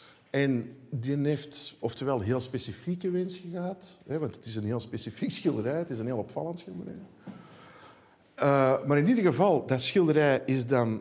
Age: 50-69